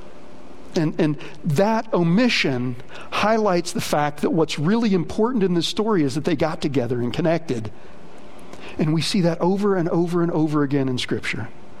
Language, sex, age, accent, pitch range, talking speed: English, male, 50-69, American, 180-250 Hz, 170 wpm